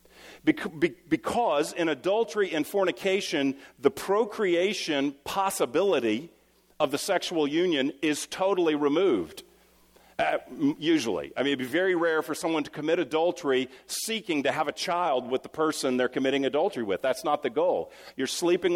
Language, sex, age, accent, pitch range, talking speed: English, male, 50-69, American, 150-195 Hz, 150 wpm